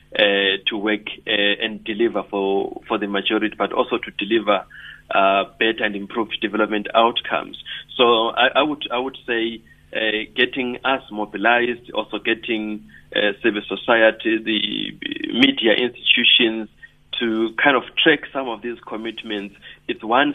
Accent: South African